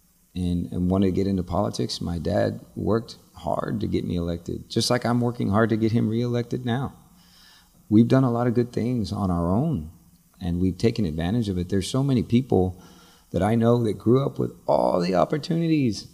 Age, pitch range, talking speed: 40-59, 90-120 Hz, 200 wpm